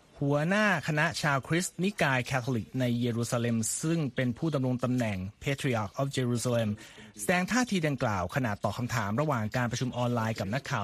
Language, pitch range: Thai, 120-155 Hz